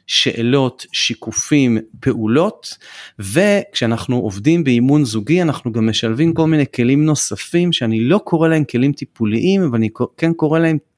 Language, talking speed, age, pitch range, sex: Hebrew, 135 wpm, 30-49, 115-150 Hz, male